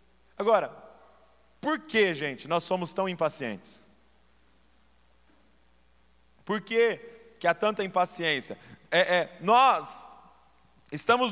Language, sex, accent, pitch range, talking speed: Portuguese, male, Brazilian, 170-225 Hz, 95 wpm